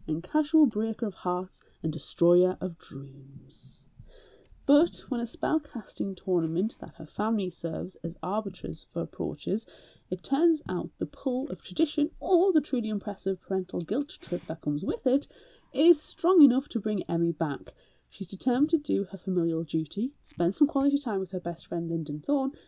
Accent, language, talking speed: British, English, 170 wpm